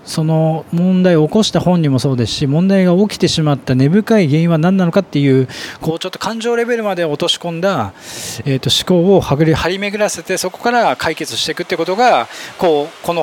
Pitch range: 120-165 Hz